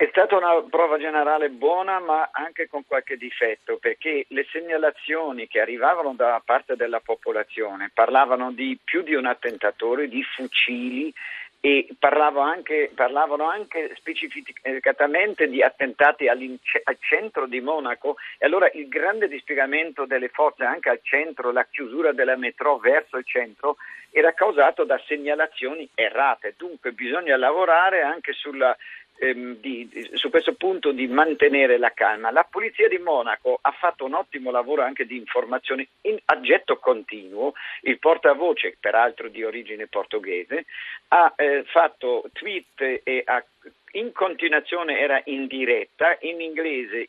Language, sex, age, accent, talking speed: Italian, male, 50-69, native, 140 wpm